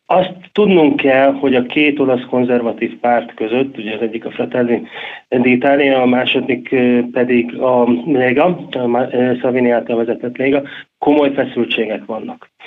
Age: 30-49